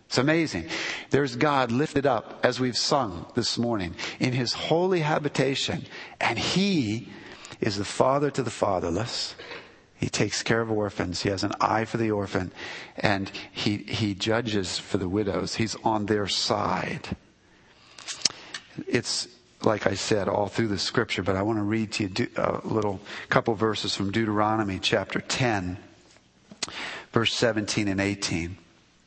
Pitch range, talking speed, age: 105-140 Hz, 155 wpm, 50-69